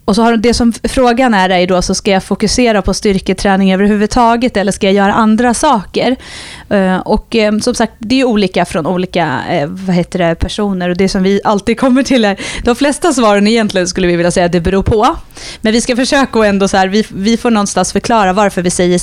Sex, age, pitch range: female, 30-49, 185-225 Hz